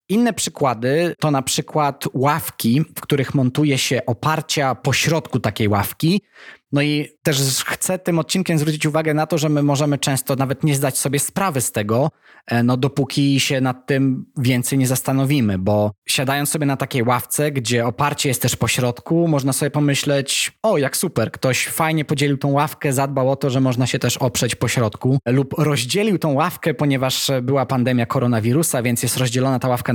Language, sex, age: Polish, male, 20-39